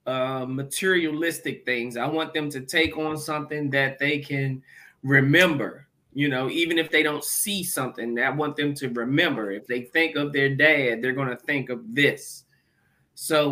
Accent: American